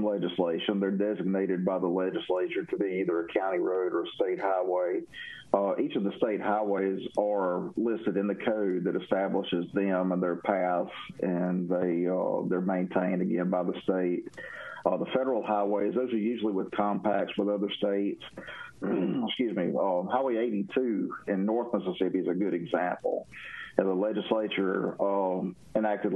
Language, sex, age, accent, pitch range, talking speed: English, male, 50-69, American, 95-105 Hz, 165 wpm